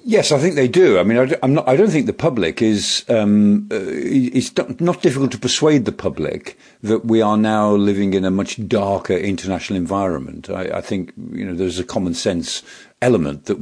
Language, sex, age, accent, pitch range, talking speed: English, male, 50-69, British, 95-125 Hz, 210 wpm